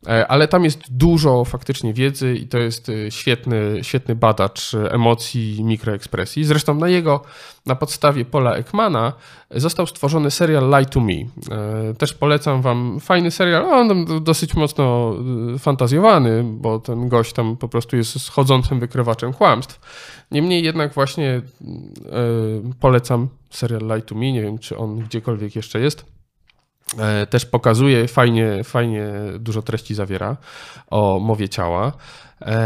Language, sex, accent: Polish, male, native